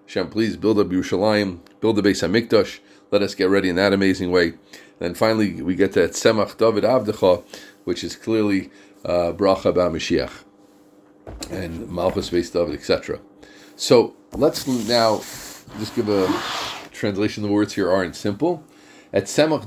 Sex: male